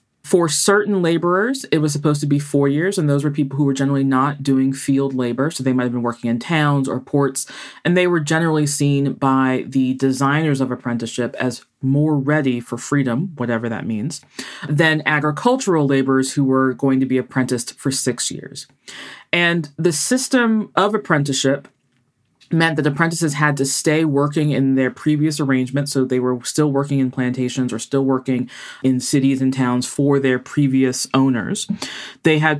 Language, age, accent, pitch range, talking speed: English, 20-39, American, 130-155 Hz, 180 wpm